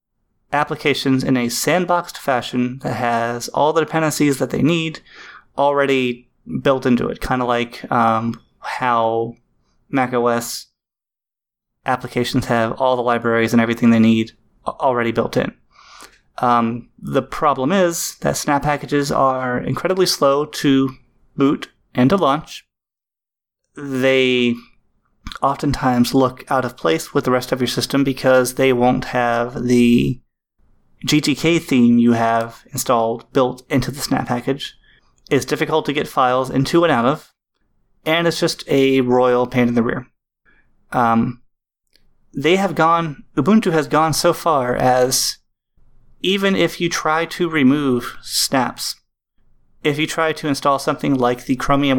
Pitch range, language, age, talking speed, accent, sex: 120-150 Hz, English, 30-49, 140 wpm, American, male